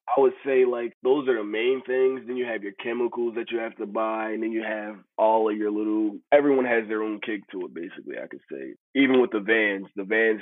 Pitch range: 100-120 Hz